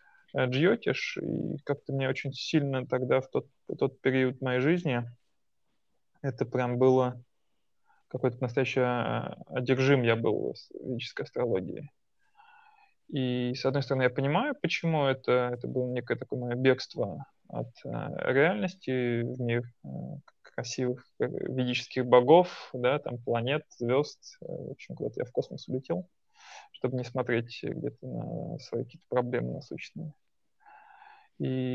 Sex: male